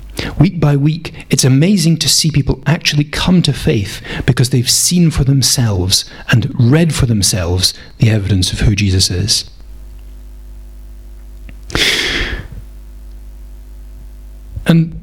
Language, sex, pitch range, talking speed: English, male, 100-140 Hz, 110 wpm